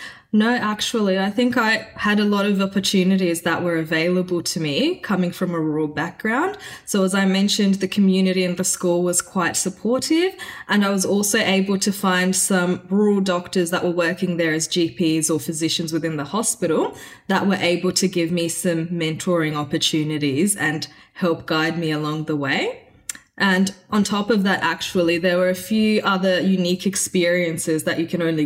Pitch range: 170-195 Hz